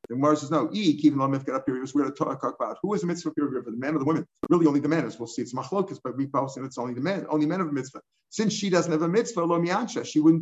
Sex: male